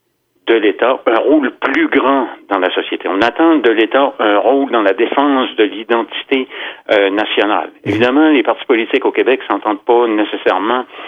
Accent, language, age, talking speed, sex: French, French, 60-79, 170 wpm, male